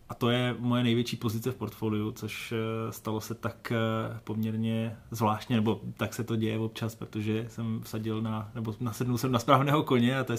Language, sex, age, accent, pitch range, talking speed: Czech, male, 20-39, native, 110-125 Hz, 190 wpm